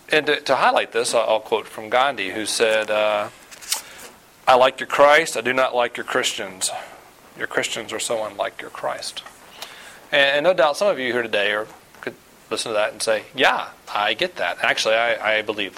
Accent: American